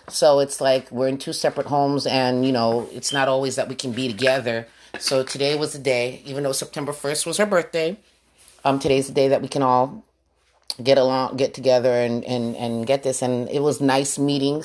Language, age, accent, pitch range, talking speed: English, 30-49, American, 130-160 Hz, 215 wpm